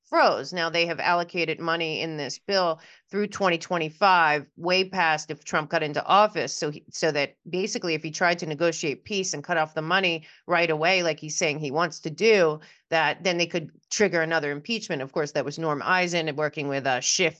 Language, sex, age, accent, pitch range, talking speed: English, female, 40-59, American, 160-215 Hz, 205 wpm